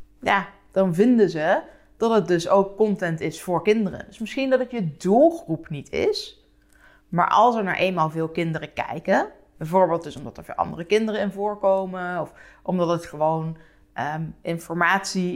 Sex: female